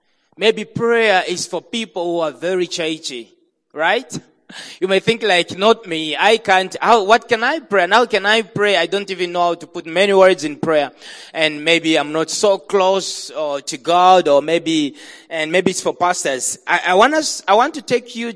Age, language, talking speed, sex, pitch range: 30-49, English, 205 wpm, male, 160-225 Hz